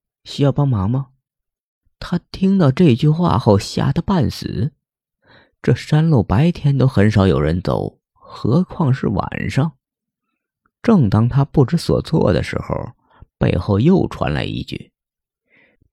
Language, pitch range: Chinese, 95-140 Hz